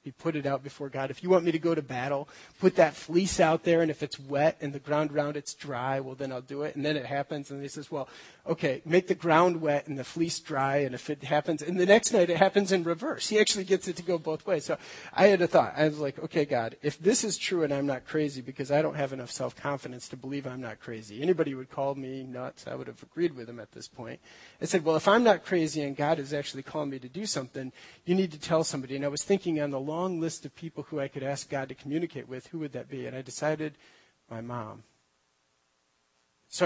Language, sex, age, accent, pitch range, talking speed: English, male, 30-49, American, 135-165 Hz, 265 wpm